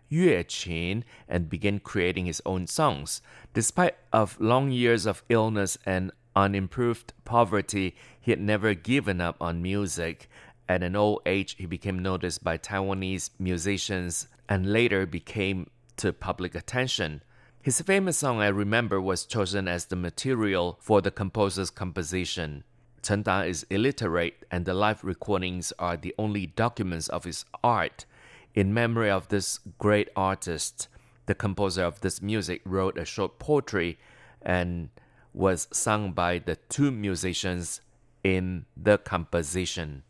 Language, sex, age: English, male, 30-49